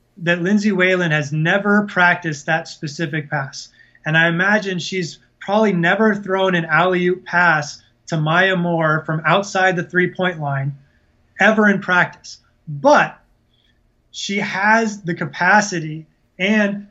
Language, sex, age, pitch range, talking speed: English, male, 20-39, 155-190 Hz, 130 wpm